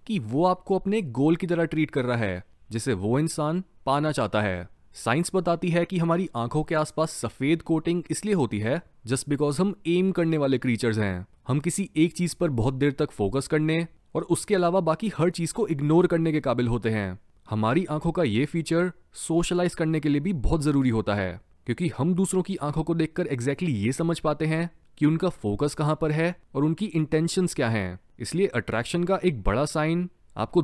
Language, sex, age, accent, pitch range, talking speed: Hindi, male, 30-49, native, 125-170 Hz, 205 wpm